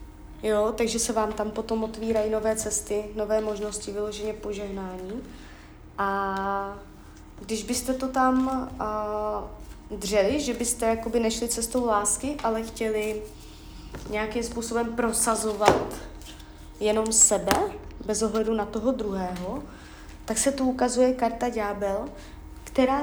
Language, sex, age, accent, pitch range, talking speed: Czech, female, 20-39, native, 205-240 Hz, 110 wpm